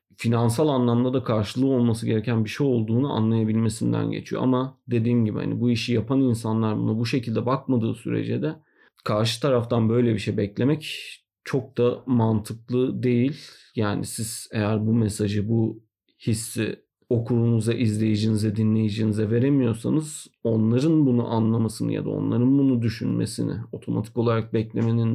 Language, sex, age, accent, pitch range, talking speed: Turkish, male, 40-59, native, 110-130 Hz, 135 wpm